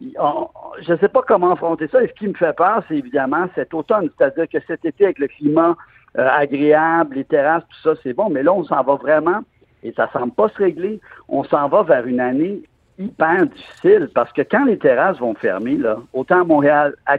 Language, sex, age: French, male, 60-79